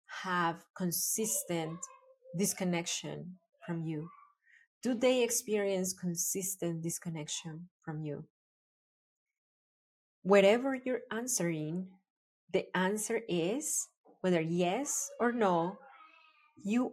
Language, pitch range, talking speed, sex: English, 175-220 Hz, 80 wpm, female